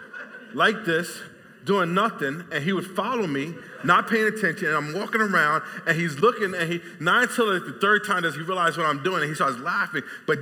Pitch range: 180-220 Hz